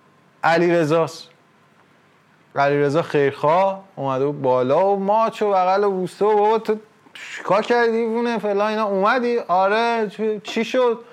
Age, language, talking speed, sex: 30-49, Persian, 135 wpm, male